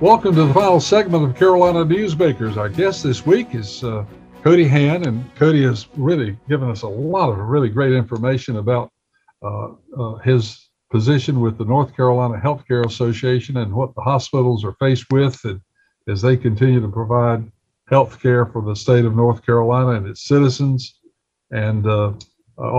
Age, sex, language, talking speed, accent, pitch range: 60-79, male, English, 170 wpm, American, 115-135 Hz